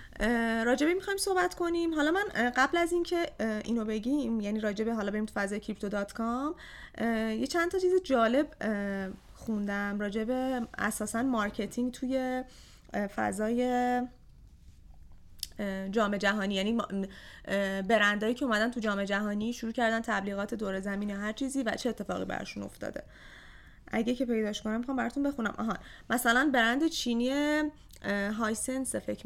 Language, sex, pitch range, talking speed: Persian, female, 200-245 Hz, 135 wpm